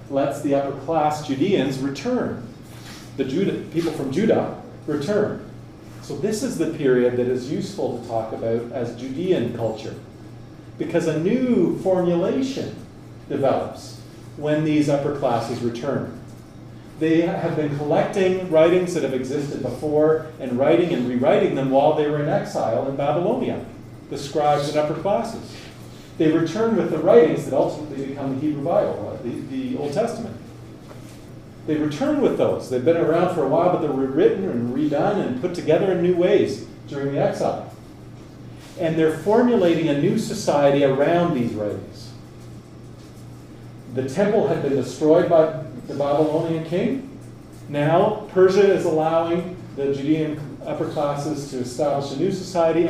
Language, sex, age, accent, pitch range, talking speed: English, male, 40-59, American, 135-165 Hz, 150 wpm